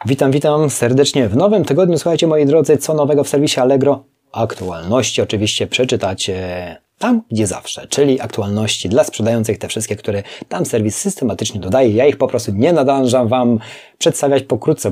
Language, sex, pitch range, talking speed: Polish, male, 110-135 Hz, 160 wpm